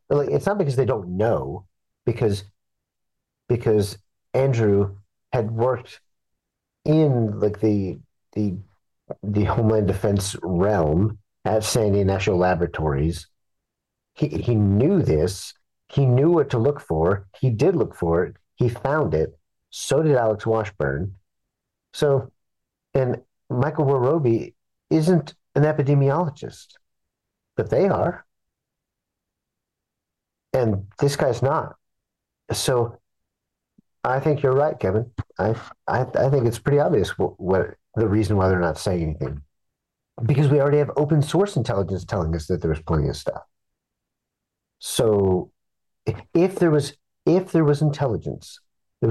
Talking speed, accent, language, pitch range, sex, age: 130 wpm, American, English, 95-140 Hz, male, 50-69